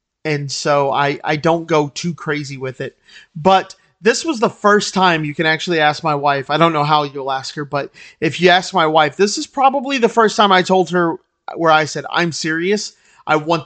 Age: 30-49